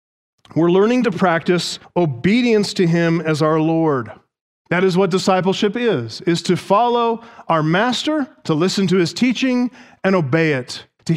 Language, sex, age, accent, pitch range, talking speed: English, male, 40-59, American, 150-205 Hz, 155 wpm